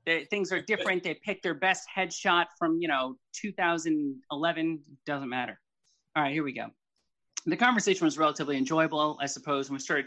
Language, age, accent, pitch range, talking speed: English, 30-49, American, 140-190 Hz, 180 wpm